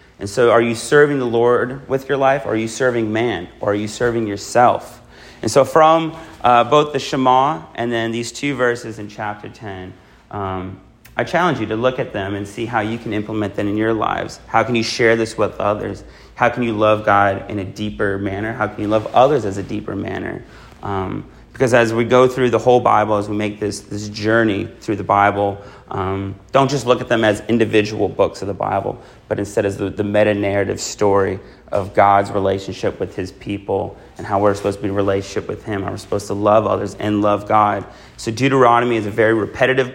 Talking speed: 220 wpm